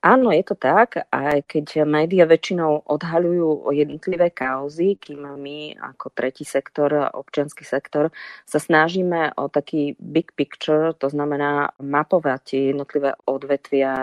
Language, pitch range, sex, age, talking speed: Slovak, 140-150 Hz, female, 30-49, 125 wpm